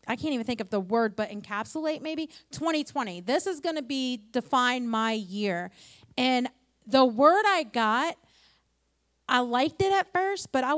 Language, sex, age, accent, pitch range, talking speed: English, female, 30-49, American, 215-280 Hz, 175 wpm